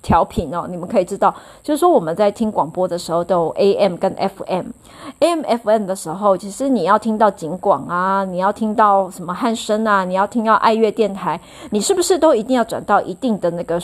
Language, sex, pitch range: Chinese, female, 190-235 Hz